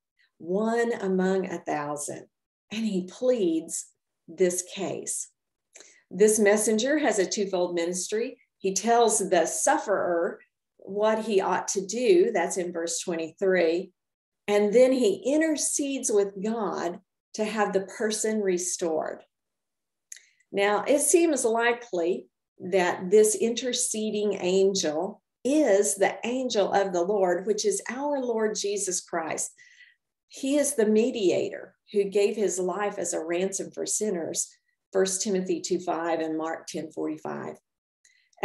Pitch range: 180-235 Hz